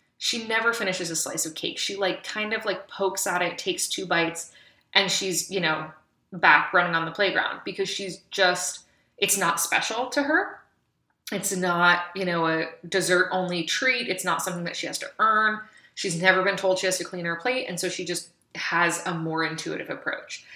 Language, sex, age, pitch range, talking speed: English, female, 20-39, 170-195 Hz, 205 wpm